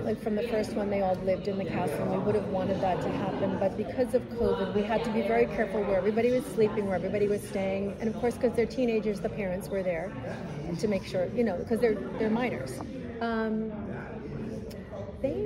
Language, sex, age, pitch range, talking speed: English, female, 40-59, 190-230 Hz, 220 wpm